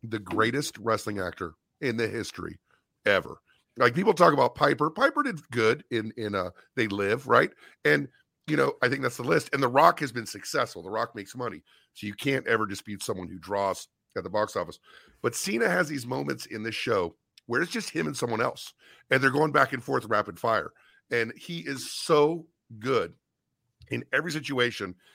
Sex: male